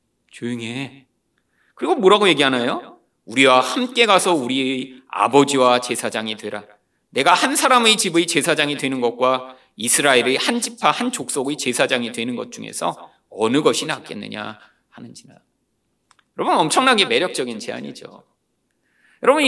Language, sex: Korean, male